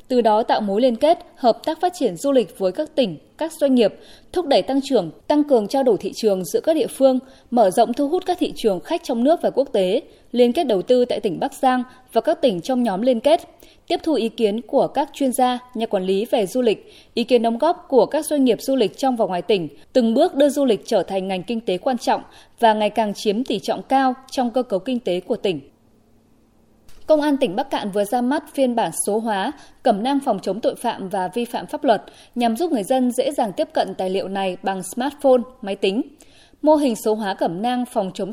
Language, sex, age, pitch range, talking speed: Vietnamese, female, 20-39, 215-280 Hz, 250 wpm